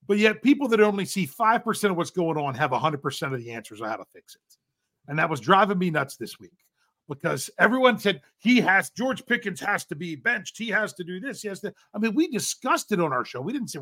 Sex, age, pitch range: male, 40-59, 145-210 Hz